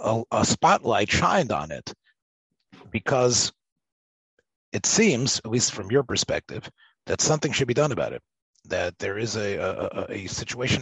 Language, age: English, 40-59